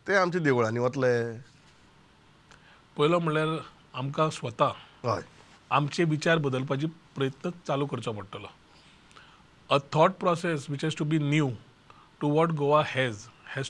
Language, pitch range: English, 135-175 Hz